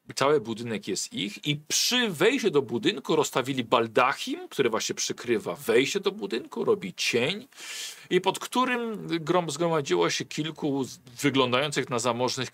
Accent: native